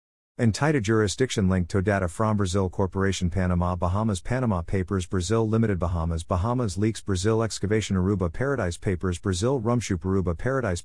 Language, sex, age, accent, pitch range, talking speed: English, male, 40-59, American, 95-110 Hz, 145 wpm